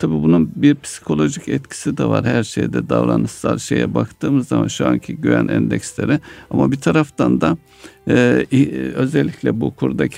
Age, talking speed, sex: 60-79, 145 wpm, male